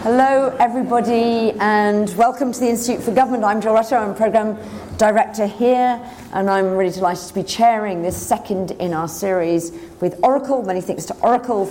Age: 40-59